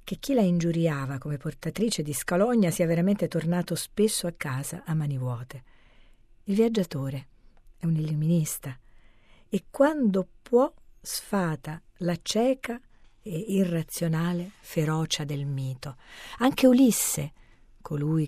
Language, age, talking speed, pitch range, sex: Italian, 40-59, 120 wpm, 140-180 Hz, female